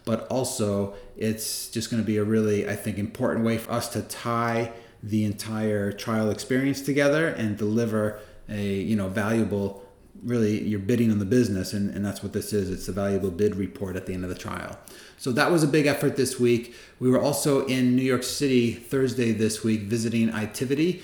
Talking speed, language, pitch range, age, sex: 205 wpm, English, 110-130 Hz, 30-49, male